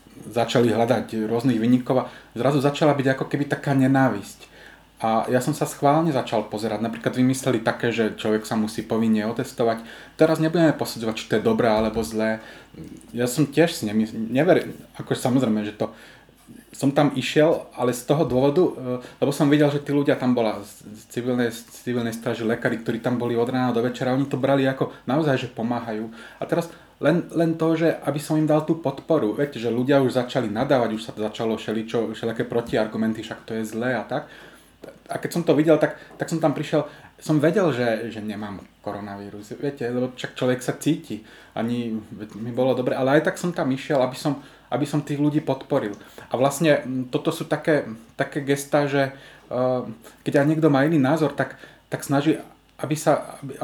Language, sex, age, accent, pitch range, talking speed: Czech, male, 30-49, native, 115-150 Hz, 190 wpm